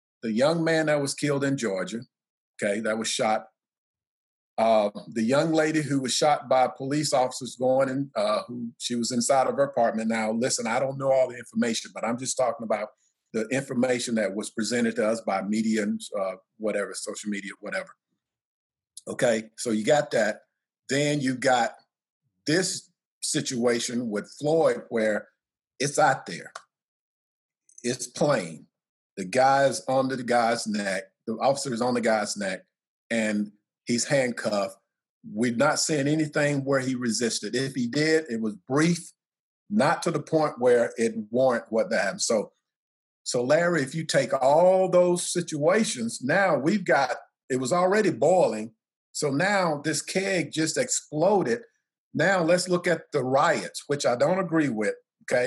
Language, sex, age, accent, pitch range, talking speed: English, male, 50-69, American, 120-160 Hz, 160 wpm